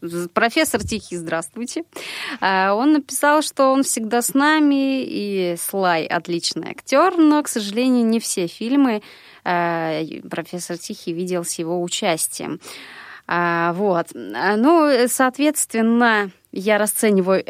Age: 20-39